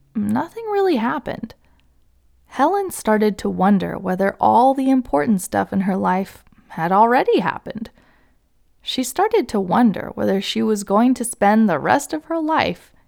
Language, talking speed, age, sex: English, 150 wpm, 20-39, female